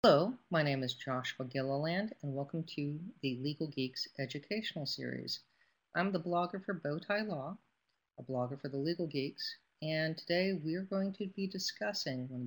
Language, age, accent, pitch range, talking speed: English, 40-59, American, 130-175 Hz, 175 wpm